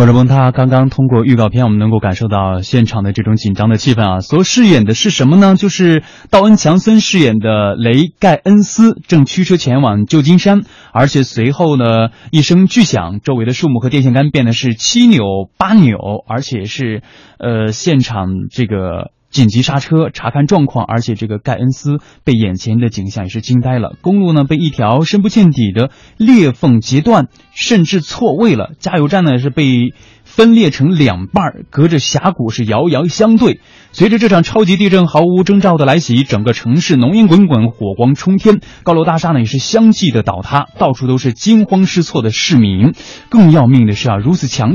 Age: 20-39